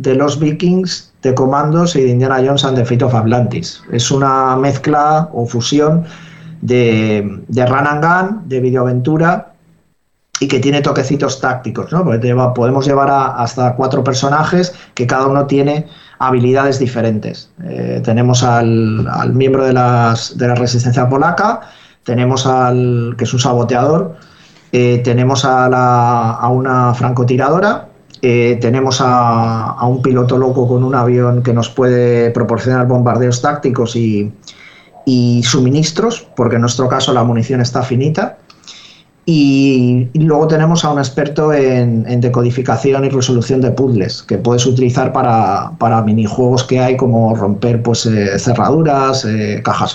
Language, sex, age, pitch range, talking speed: Spanish, male, 40-59, 120-140 Hz, 150 wpm